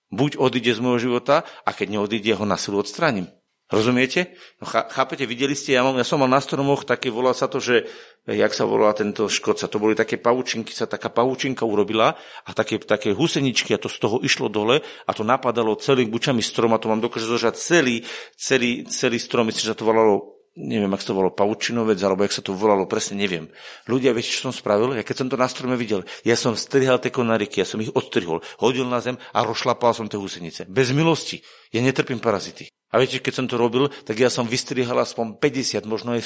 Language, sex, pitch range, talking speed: Slovak, male, 110-130 Hz, 225 wpm